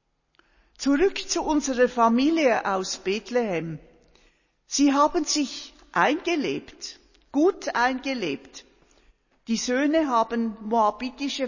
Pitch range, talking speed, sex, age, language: 205-265 Hz, 85 wpm, female, 50-69, German